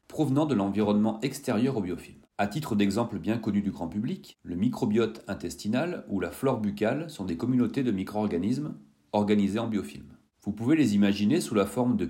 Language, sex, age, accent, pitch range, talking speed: French, male, 40-59, French, 100-130 Hz, 185 wpm